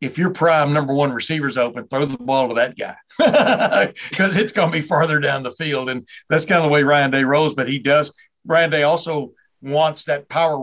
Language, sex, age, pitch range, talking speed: English, male, 60-79, 135-155 Hz, 225 wpm